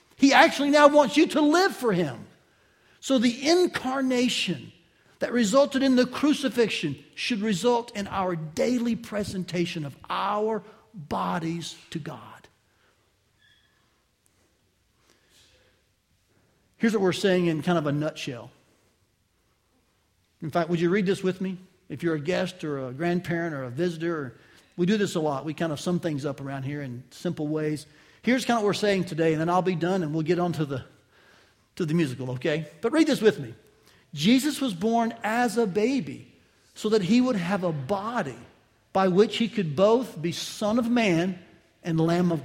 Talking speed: 170 wpm